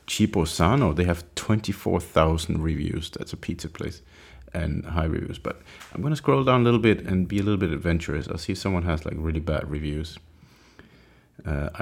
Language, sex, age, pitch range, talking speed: English, male, 30-49, 80-105 Hz, 195 wpm